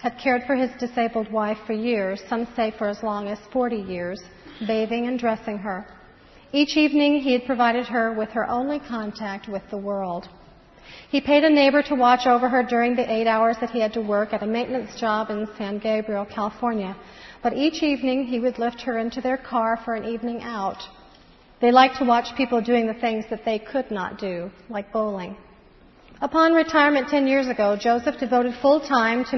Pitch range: 215-255 Hz